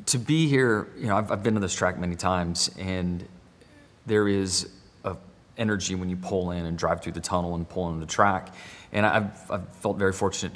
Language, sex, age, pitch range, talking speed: English, male, 30-49, 90-105 Hz, 215 wpm